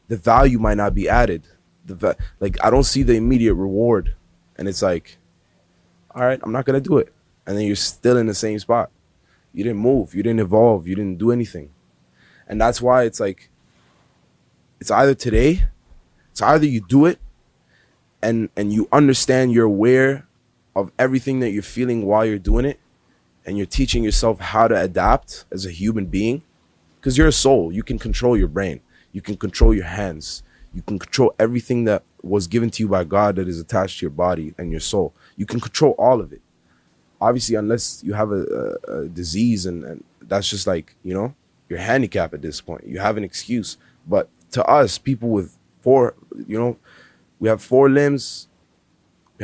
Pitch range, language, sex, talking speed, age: 95-120 Hz, English, male, 190 wpm, 20-39